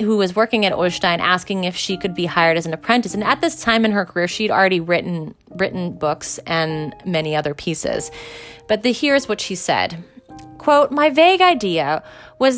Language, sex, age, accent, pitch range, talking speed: English, female, 30-49, American, 180-235 Hz, 195 wpm